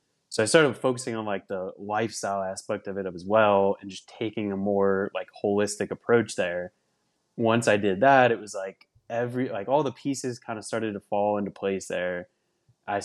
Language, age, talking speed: English, 20-39, 200 wpm